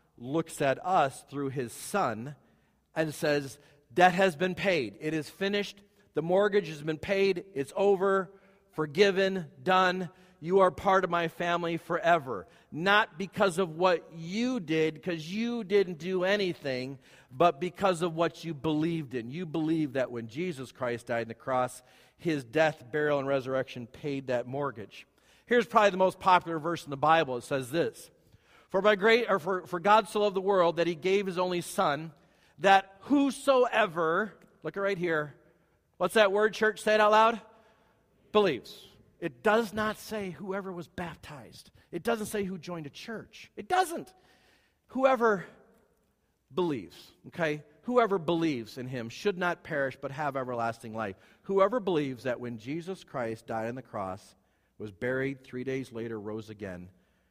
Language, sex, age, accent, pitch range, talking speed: English, male, 50-69, American, 135-195 Hz, 165 wpm